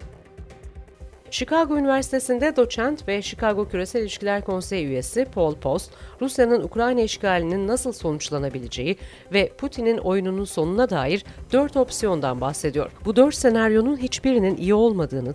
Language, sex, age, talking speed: Turkish, female, 40-59, 115 wpm